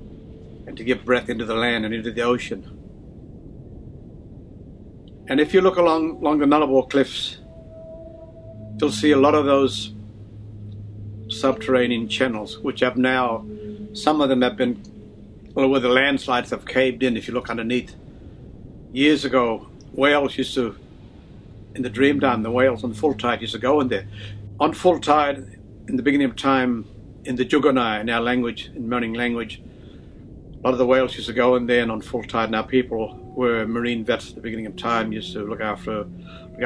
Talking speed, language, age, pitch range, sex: 180 wpm, English, 60-79, 105-130 Hz, male